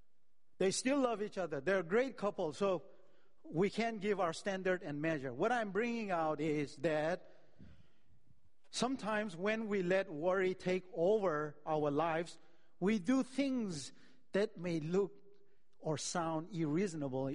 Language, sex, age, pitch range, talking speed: English, male, 50-69, 160-230 Hz, 140 wpm